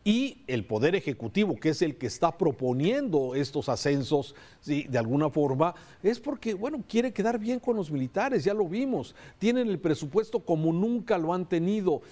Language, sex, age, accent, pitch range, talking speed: Spanish, male, 50-69, Mexican, 145-210 Hz, 175 wpm